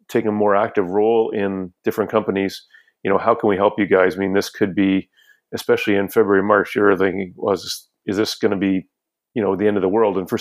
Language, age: English, 30-49